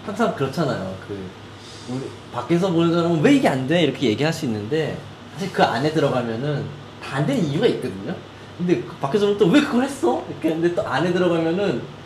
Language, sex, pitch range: Korean, male, 115-160 Hz